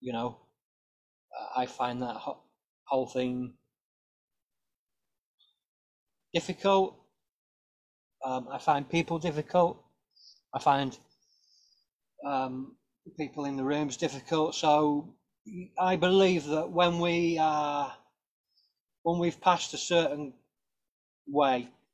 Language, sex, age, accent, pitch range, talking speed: English, male, 30-49, British, 135-165 Hz, 90 wpm